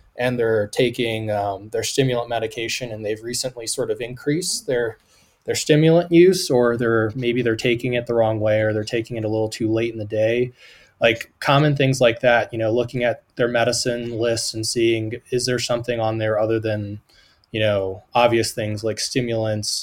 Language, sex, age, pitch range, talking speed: English, male, 20-39, 110-130 Hz, 195 wpm